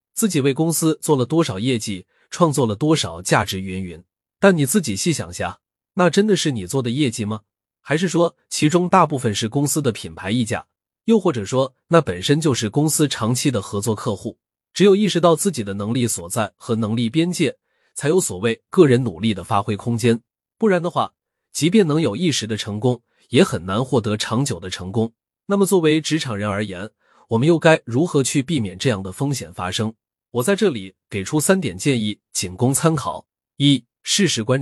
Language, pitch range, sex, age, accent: Chinese, 105-155 Hz, male, 20-39, native